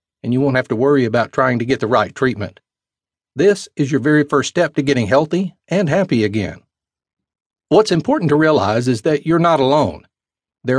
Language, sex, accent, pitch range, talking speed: English, male, American, 125-150 Hz, 195 wpm